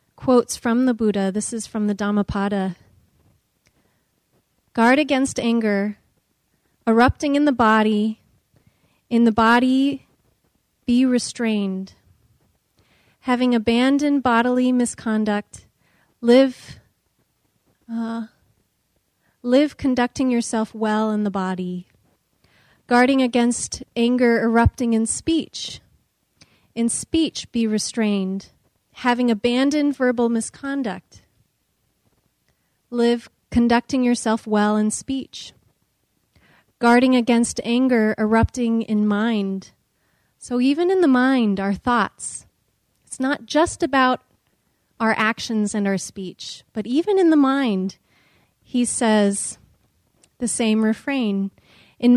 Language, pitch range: English, 220-255 Hz